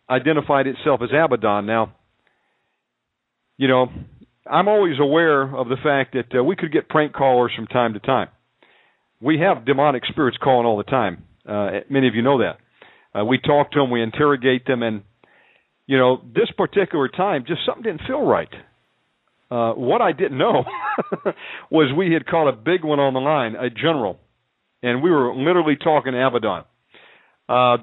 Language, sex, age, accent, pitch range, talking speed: English, male, 50-69, American, 120-150 Hz, 175 wpm